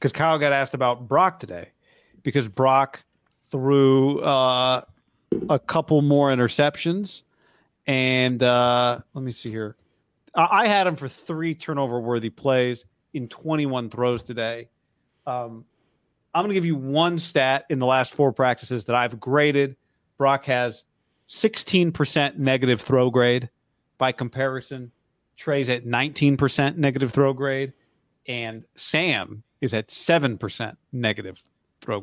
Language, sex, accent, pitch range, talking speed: English, male, American, 120-145 Hz, 135 wpm